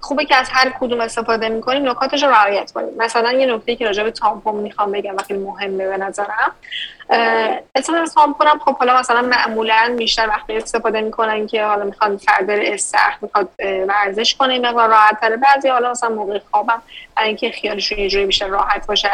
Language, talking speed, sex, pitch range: English, 180 wpm, female, 205-240 Hz